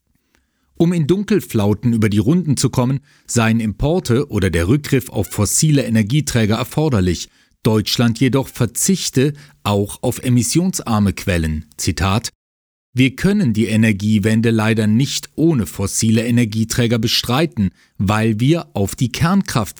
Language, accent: German, German